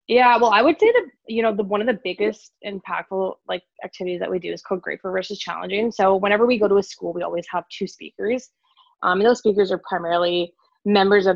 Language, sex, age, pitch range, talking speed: English, female, 20-39, 175-205 Hz, 230 wpm